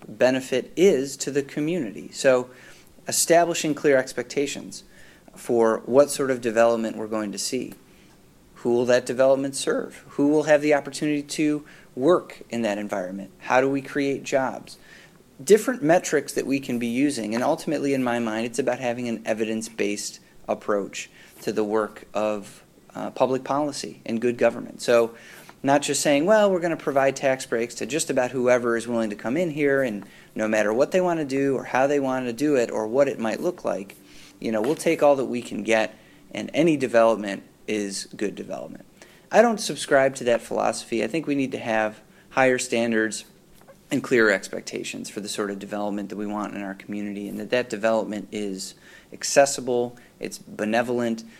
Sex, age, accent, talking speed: male, 30-49, American, 185 wpm